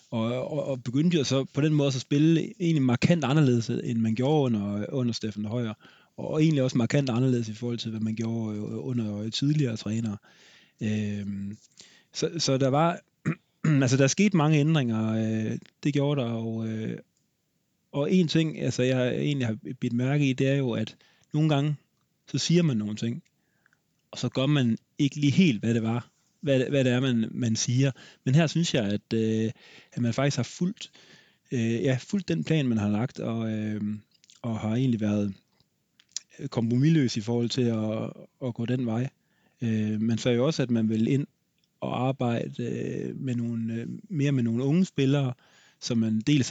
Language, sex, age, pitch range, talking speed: Danish, male, 30-49, 115-145 Hz, 185 wpm